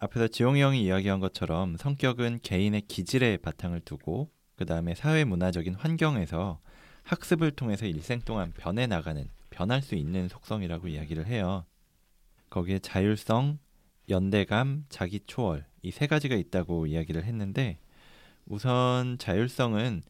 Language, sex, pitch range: Korean, male, 90-125 Hz